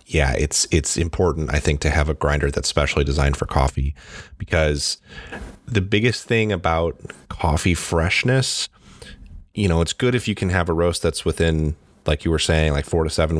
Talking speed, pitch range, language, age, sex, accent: 190 wpm, 75-90 Hz, English, 30-49, male, American